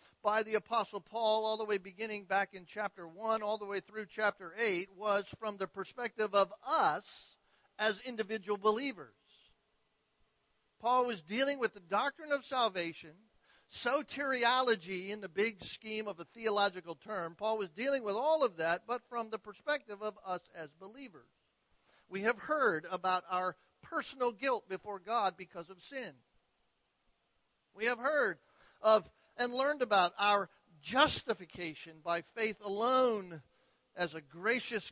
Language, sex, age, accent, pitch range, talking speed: English, male, 50-69, American, 190-235 Hz, 150 wpm